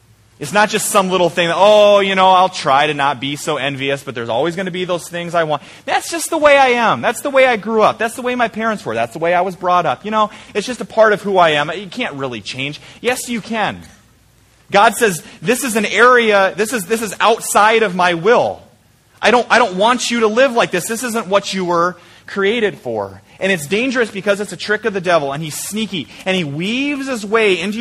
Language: English